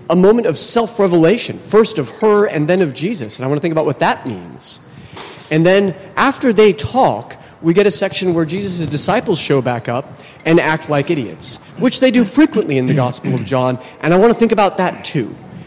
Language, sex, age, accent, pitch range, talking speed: English, male, 30-49, American, 135-185 Hz, 215 wpm